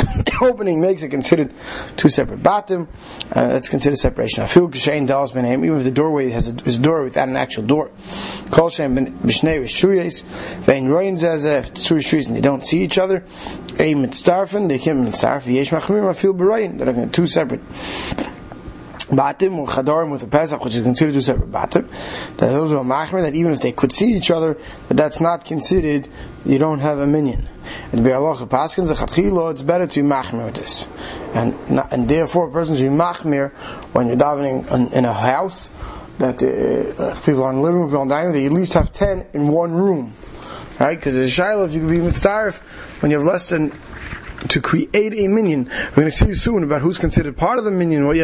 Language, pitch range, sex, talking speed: English, 135-175 Hz, male, 205 wpm